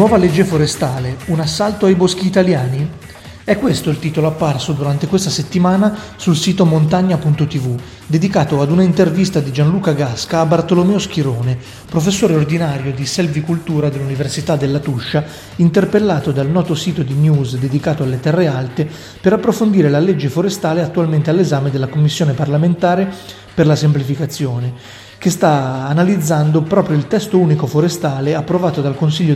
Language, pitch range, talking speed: Italian, 140-175 Hz, 145 wpm